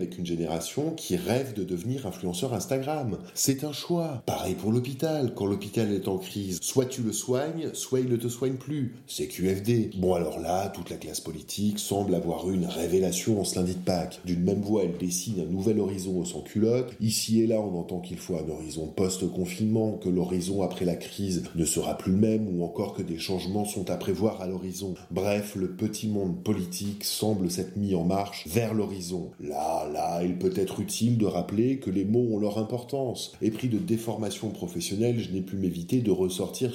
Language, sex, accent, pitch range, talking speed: French, male, French, 90-110 Hz, 200 wpm